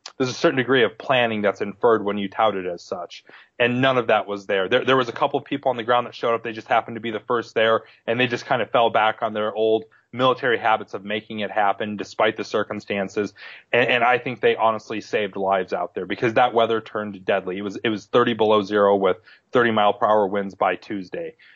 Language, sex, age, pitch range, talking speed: English, male, 30-49, 100-120 Hz, 245 wpm